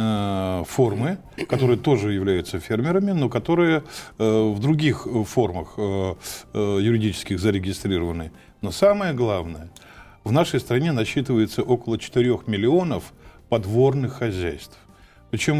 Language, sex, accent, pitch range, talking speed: Russian, male, native, 100-135 Hz, 110 wpm